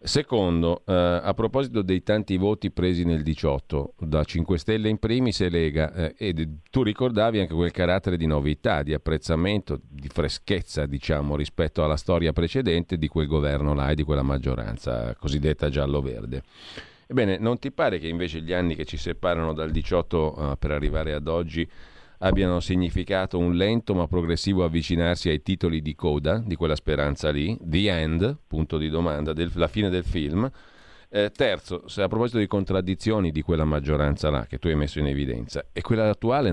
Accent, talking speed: native, 175 wpm